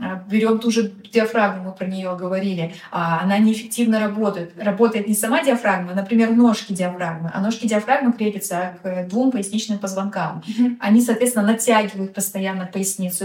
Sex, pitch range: female, 195-230 Hz